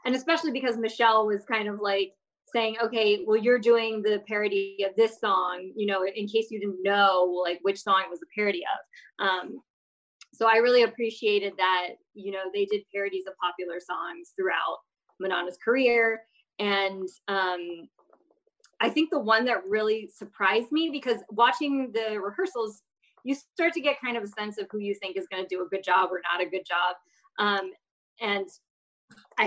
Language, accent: English, American